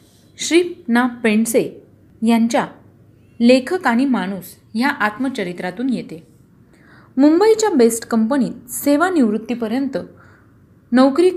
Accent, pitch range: native, 210-270 Hz